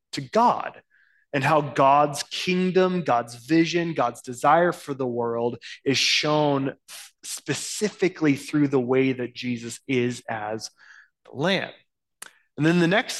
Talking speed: 135 wpm